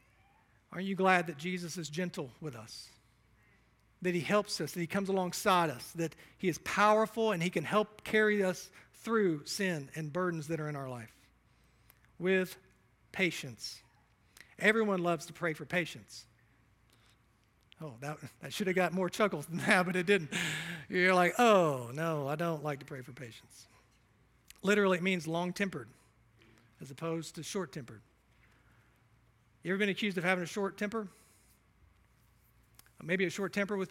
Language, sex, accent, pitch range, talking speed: English, male, American, 115-185 Hz, 160 wpm